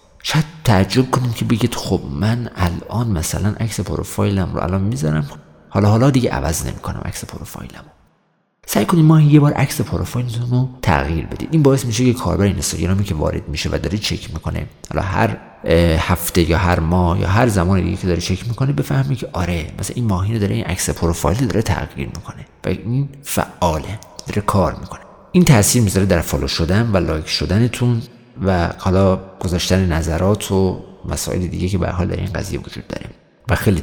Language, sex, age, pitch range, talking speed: Persian, male, 50-69, 90-120 Hz, 185 wpm